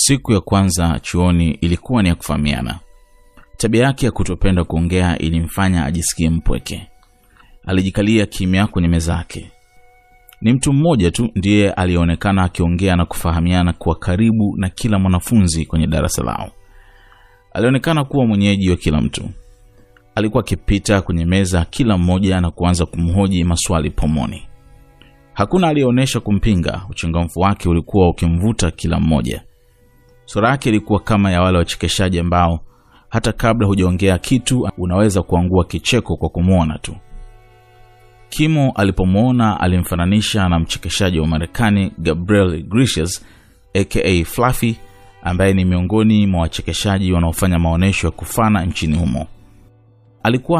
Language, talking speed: English, 120 wpm